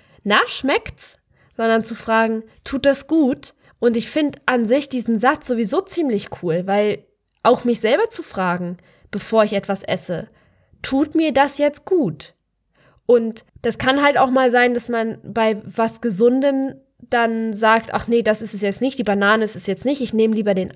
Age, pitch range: 10-29, 210-260 Hz